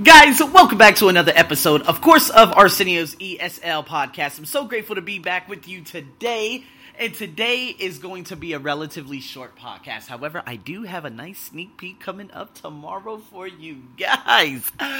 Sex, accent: male, American